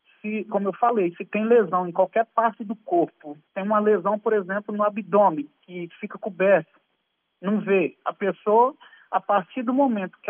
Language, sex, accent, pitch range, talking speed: Portuguese, male, Brazilian, 180-215 Hz, 175 wpm